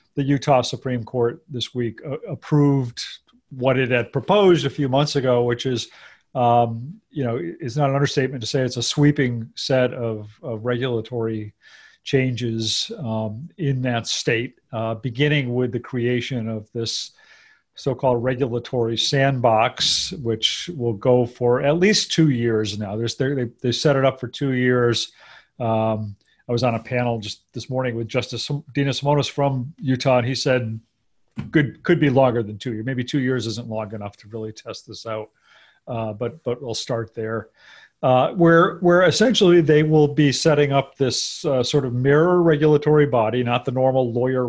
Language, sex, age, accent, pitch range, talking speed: English, male, 40-59, American, 115-140 Hz, 175 wpm